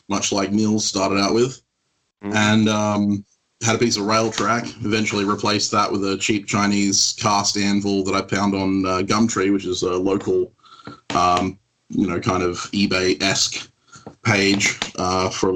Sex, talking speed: male, 165 wpm